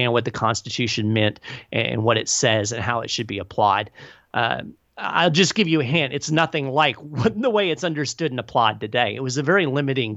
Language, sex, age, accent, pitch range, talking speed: English, male, 40-59, American, 115-145 Hz, 210 wpm